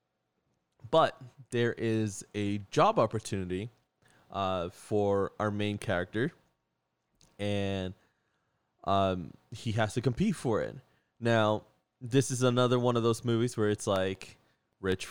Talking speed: 125 wpm